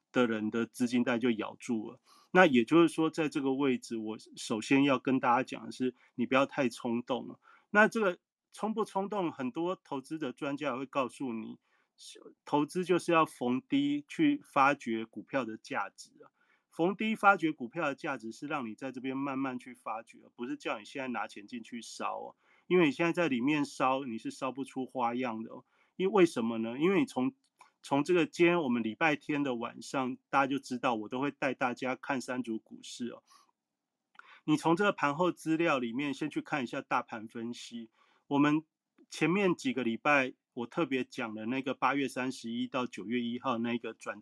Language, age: Chinese, 30-49